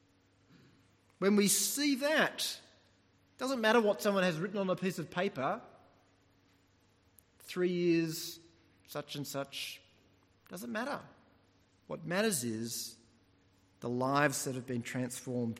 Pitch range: 95-140 Hz